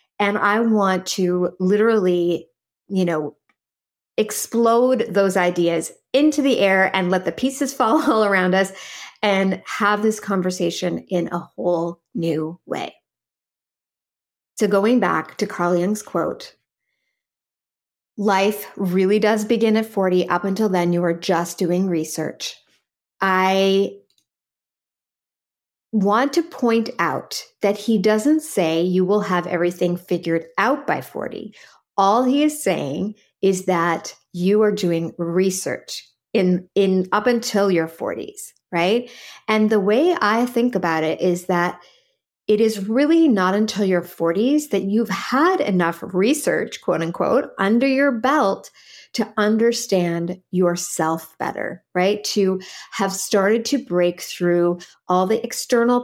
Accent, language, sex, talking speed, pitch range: American, English, female, 135 wpm, 175-225 Hz